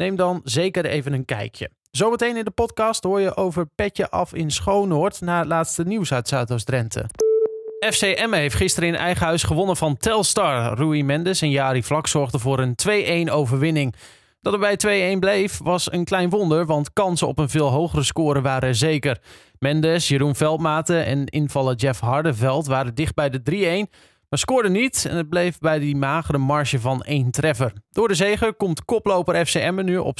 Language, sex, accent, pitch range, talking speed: Dutch, male, Dutch, 140-180 Hz, 190 wpm